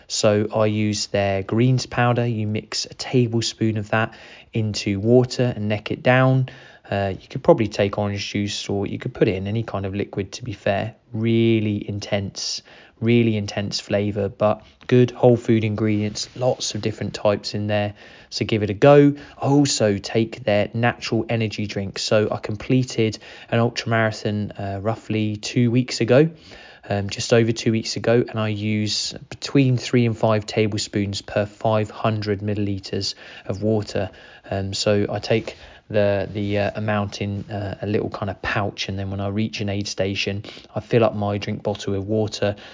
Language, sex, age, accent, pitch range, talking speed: English, male, 20-39, British, 100-115 Hz, 175 wpm